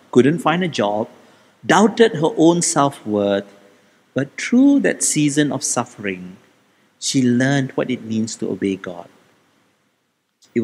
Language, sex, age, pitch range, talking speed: English, male, 50-69, 120-190 Hz, 130 wpm